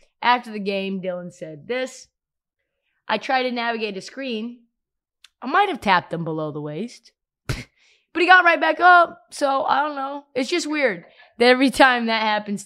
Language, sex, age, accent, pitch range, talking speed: English, female, 20-39, American, 175-260 Hz, 180 wpm